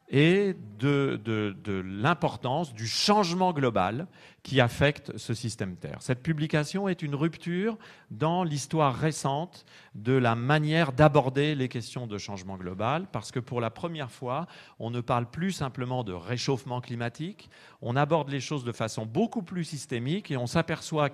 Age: 40-59